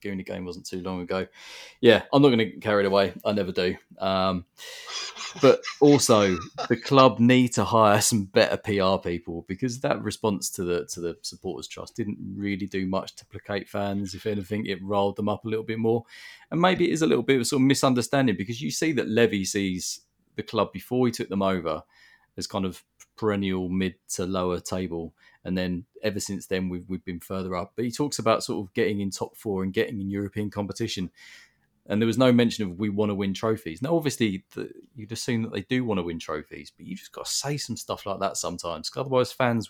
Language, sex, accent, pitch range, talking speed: English, male, British, 95-120 Hz, 225 wpm